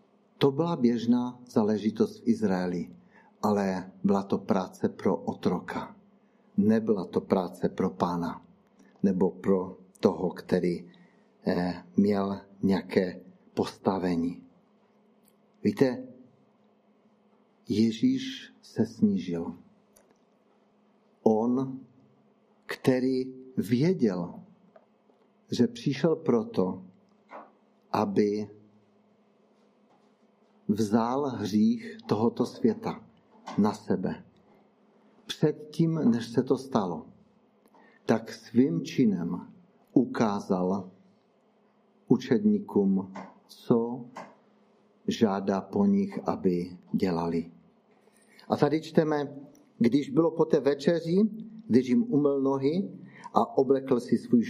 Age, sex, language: 60-79, male, Czech